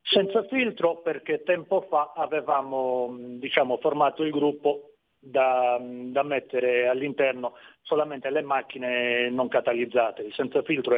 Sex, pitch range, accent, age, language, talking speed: male, 125-155 Hz, native, 40-59, Italian, 120 wpm